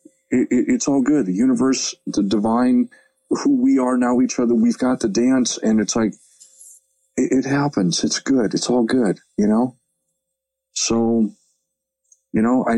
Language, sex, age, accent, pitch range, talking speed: English, male, 40-59, American, 100-135 Hz, 170 wpm